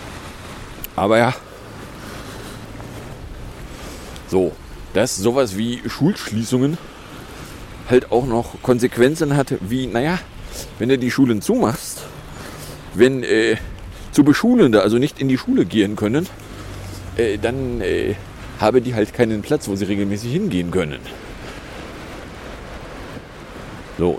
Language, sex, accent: German, male, German